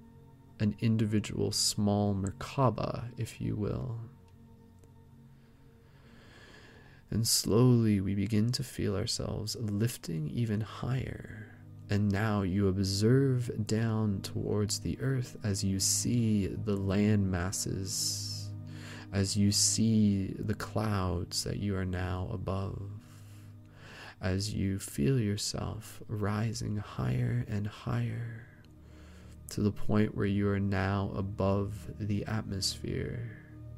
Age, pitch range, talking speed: 20-39, 95-115 Hz, 105 wpm